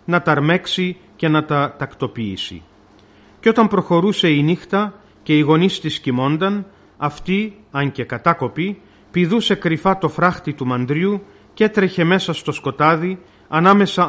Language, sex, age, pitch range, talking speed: Greek, male, 40-59, 135-185 Hz, 135 wpm